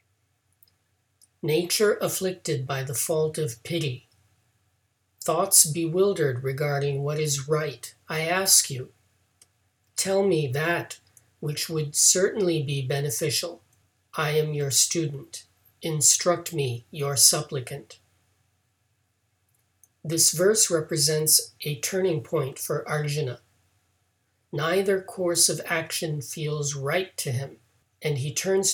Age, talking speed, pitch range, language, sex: 50-69, 105 wpm, 115-160 Hz, English, male